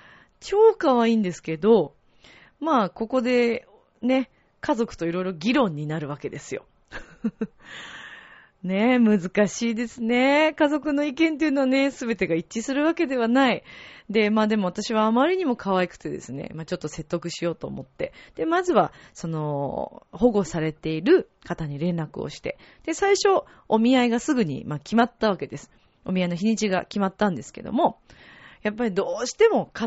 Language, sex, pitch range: Japanese, female, 165-265 Hz